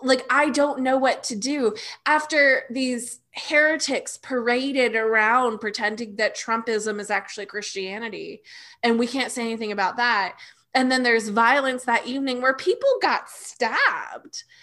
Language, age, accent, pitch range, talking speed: English, 20-39, American, 215-290 Hz, 145 wpm